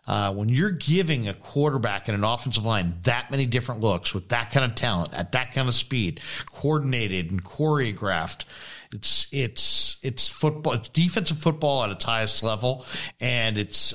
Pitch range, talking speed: 105-135 Hz, 170 wpm